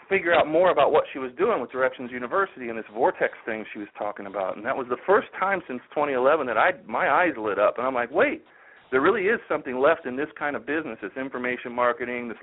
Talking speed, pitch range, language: 245 wpm, 120-150 Hz, English